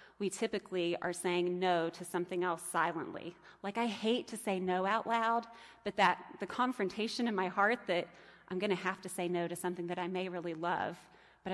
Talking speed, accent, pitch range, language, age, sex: 210 wpm, American, 175-200 Hz, English, 30-49, female